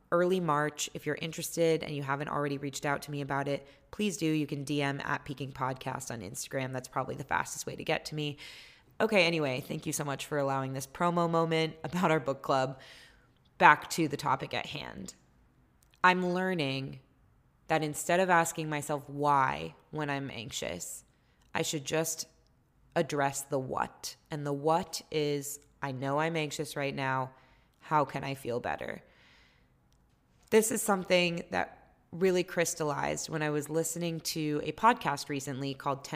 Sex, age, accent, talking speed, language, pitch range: female, 20-39, American, 170 wpm, English, 140-165 Hz